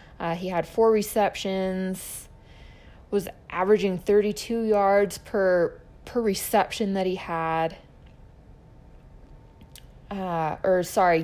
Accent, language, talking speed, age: American, English, 95 wpm, 20-39